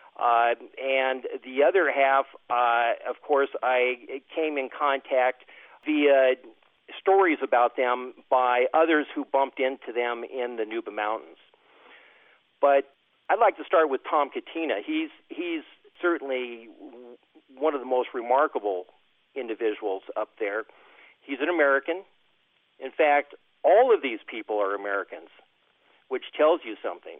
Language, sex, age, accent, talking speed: English, male, 50-69, American, 130 wpm